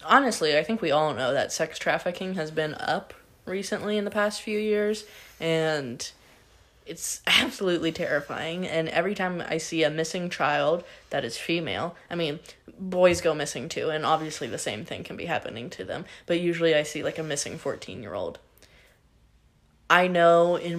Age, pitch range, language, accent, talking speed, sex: 10-29, 160-210 Hz, English, American, 175 wpm, female